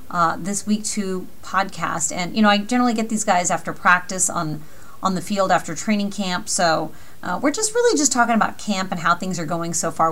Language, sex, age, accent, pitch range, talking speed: English, female, 30-49, American, 180-240 Hz, 225 wpm